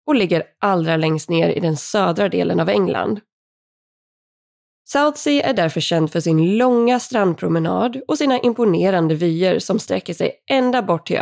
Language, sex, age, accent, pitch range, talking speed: Swedish, female, 20-39, native, 165-240 Hz, 160 wpm